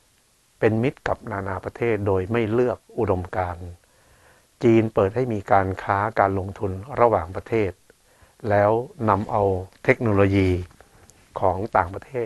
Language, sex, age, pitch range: Thai, male, 60-79, 95-115 Hz